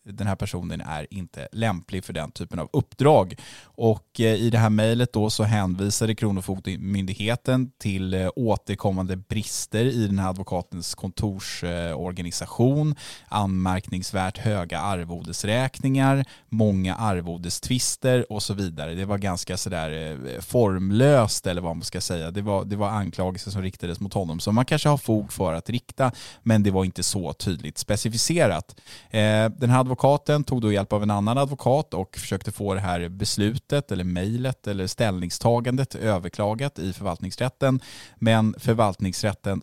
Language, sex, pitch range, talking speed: Swedish, male, 95-115 Hz, 145 wpm